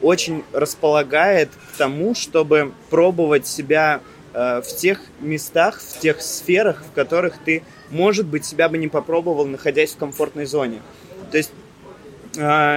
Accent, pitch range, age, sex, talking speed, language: native, 140-170 Hz, 20-39, male, 140 wpm, Russian